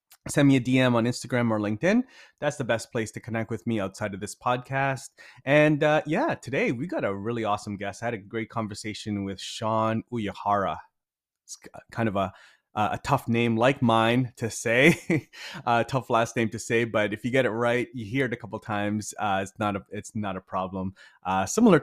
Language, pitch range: English, 105-130 Hz